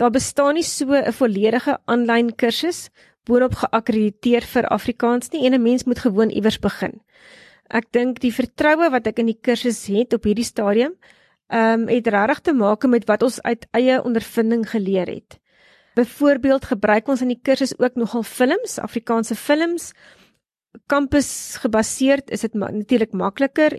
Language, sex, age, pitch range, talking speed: English, female, 30-49, 225-270 Hz, 160 wpm